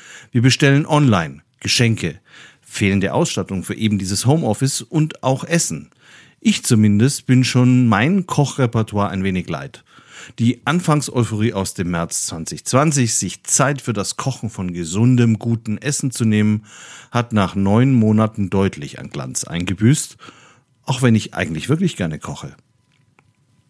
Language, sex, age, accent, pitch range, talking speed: German, male, 50-69, German, 100-135 Hz, 135 wpm